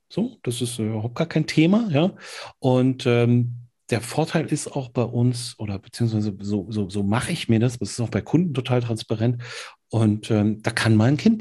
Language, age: German, 40-59